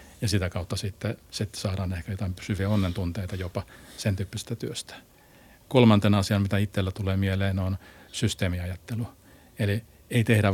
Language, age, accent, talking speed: Finnish, 50-69, native, 140 wpm